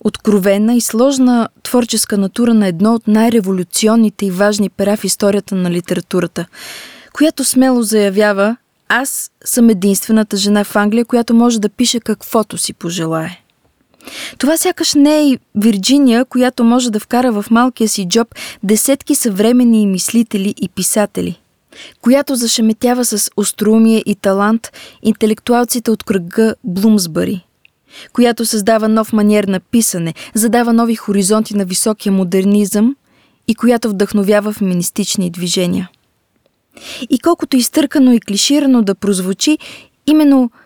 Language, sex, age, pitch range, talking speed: Bulgarian, female, 20-39, 200-235 Hz, 130 wpm